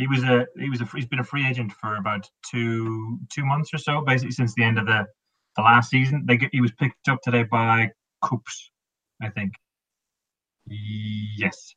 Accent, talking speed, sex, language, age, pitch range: British, 200 wpm, male, English, 20-39, 105-130 Hz